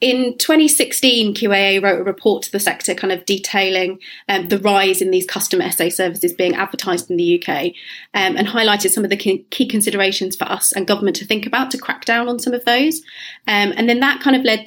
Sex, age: female, 30-49